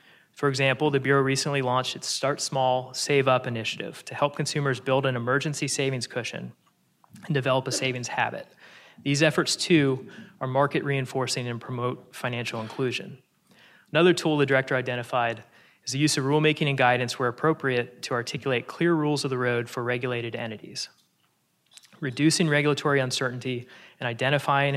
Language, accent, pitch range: English, American, 125-140 Hz